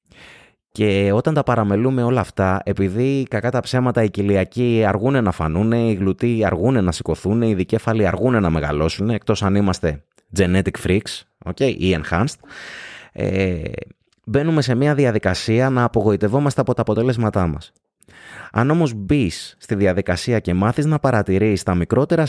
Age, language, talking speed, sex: 20-39, Greek, 150 wpm, male